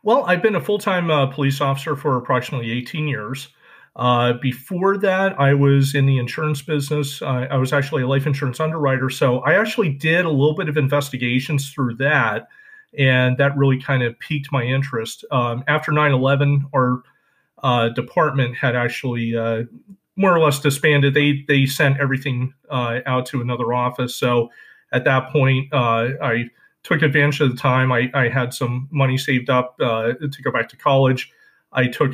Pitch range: 125-145 Hz